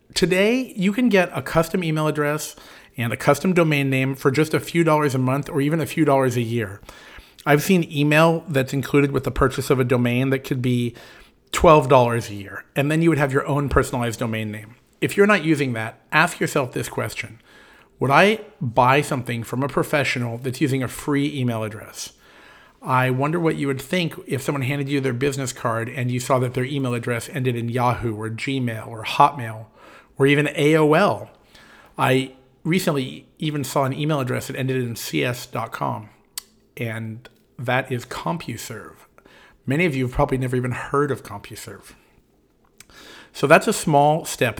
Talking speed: 185 wpm